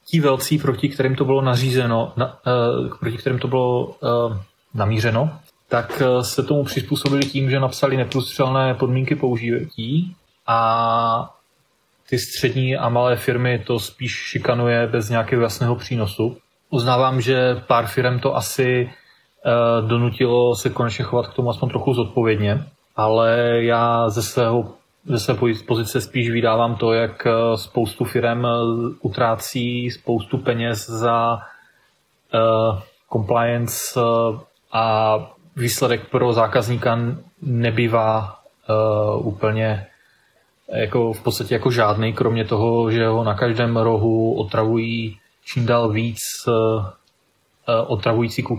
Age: 30-49